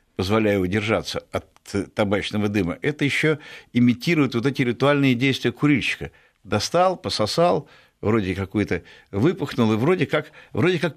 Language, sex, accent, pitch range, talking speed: Russian, male, native, 95-130 Hz, 125 wpm